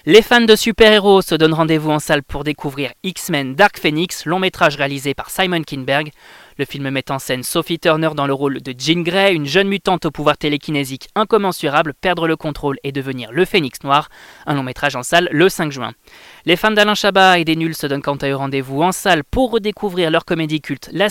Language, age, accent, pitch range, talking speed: French, 20-39, French, 145-190 Hz, 220 wpm